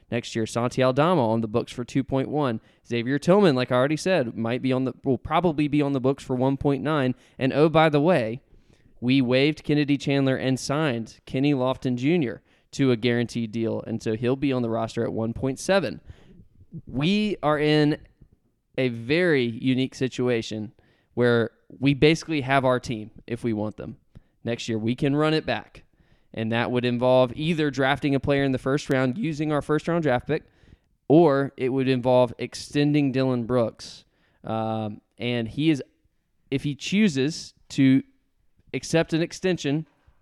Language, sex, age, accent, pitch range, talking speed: English, male, 20-39, American, 120-145 Hz, 180 wpm